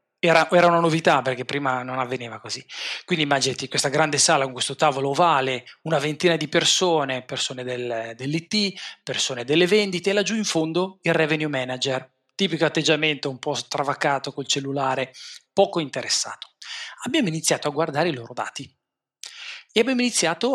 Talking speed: 155 wpm